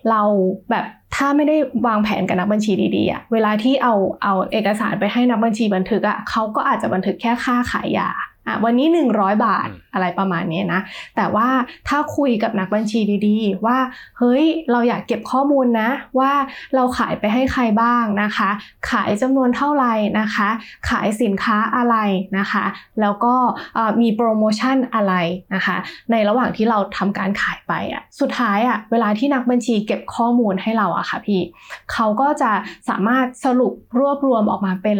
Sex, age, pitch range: female, 20-39, 205-255 Hz